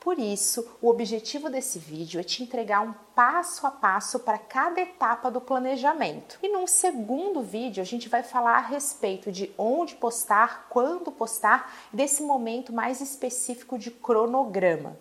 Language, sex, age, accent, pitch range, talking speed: Portuguese, female, 30-49, Brazilian, 215-280 Hz, 155 wpm